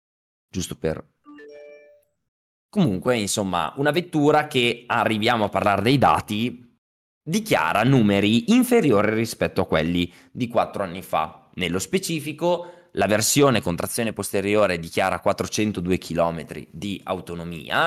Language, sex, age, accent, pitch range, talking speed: Italian, male, 20-39, native, 100-145 Hz, 115 wpm